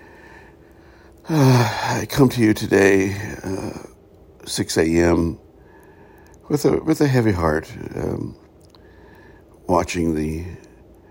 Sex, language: male, English